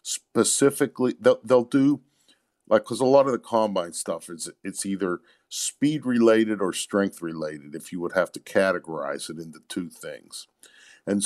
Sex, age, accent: male, 50-69, American